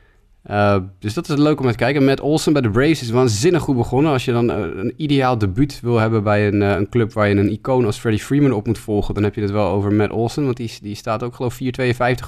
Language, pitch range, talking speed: Dutch, 100-125 Hz, 275 wpm